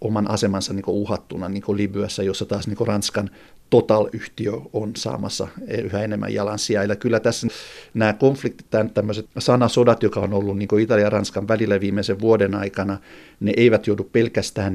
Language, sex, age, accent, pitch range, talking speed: Finnish, male, 60-79, native, 100-115 Hz, 165 wpm